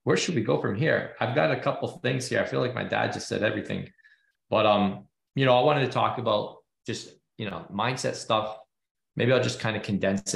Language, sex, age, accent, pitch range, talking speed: English, male, 20-39, American, 105-125 Hz, 235 wpm